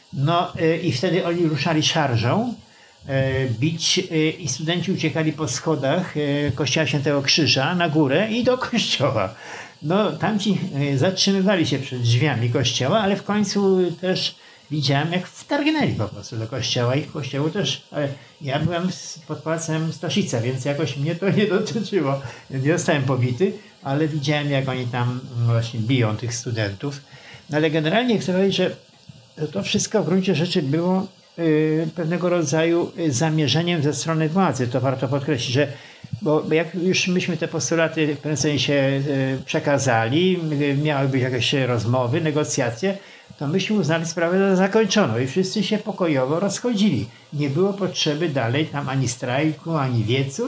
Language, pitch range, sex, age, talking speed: Polish, 135-180 Hz, male, 50-69, 150 wpm